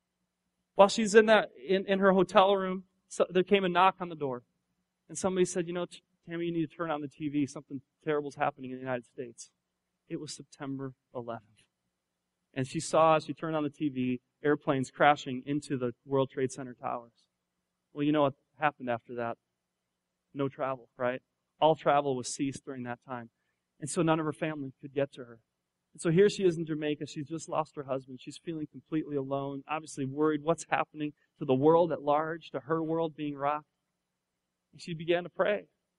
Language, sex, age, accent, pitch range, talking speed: English, male, 30-49, American, 135-175 Hz, 200 wpm